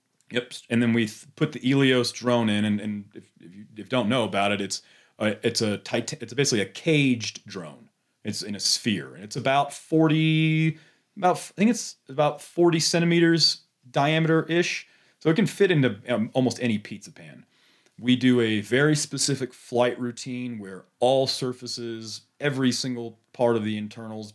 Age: 30-49